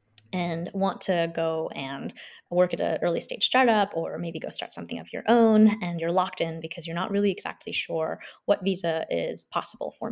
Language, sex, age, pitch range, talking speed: English, female, 20-39, 165-205 Hz, 200 wpm